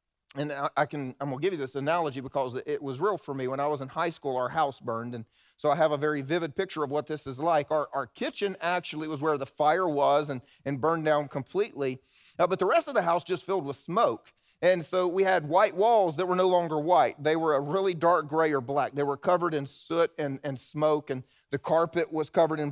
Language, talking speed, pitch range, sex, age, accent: English, 255 wpm, 150-195 Hz, male, 30-49, American